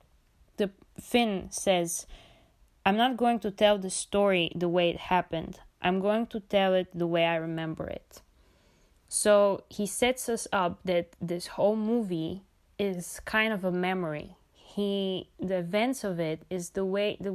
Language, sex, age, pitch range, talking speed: English, female, 20-39, 180-210 Hz, 165 wpm